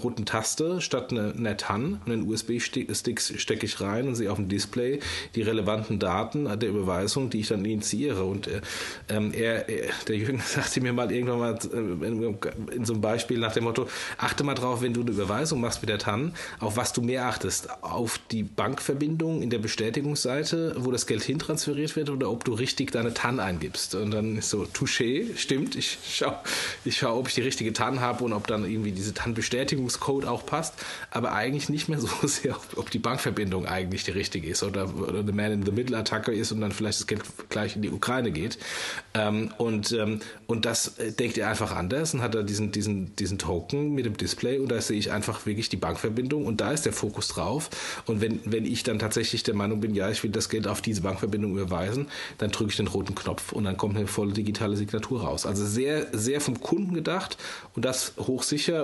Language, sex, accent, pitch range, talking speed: German, male, German, 105-125 Hz, 210 wpm